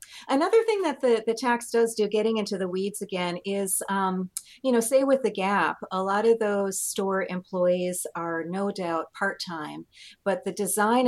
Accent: American